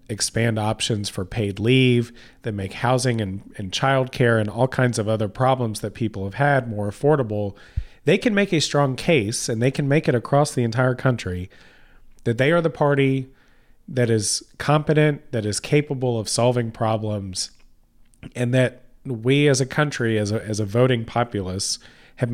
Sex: male